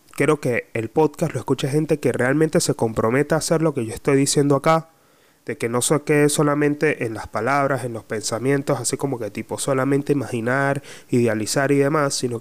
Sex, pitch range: male, 125-155 Hz